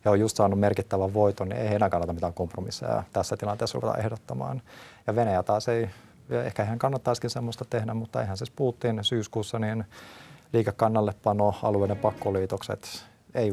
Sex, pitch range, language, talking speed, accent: male, 95-115 Hz, Finnish, 150 wpm, native